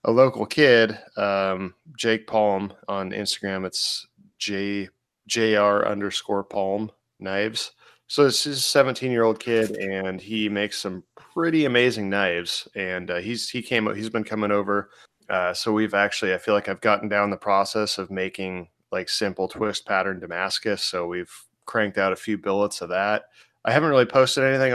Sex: male